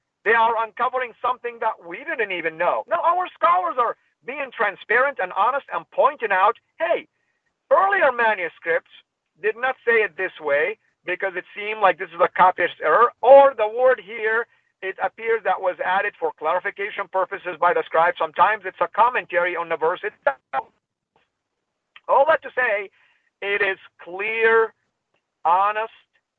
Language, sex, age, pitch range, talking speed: English, male, 50-69, 155-230 Hz, 155 wpm